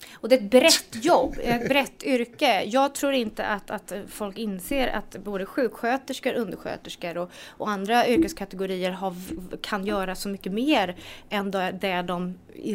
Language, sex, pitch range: English, female, 195-255 Hz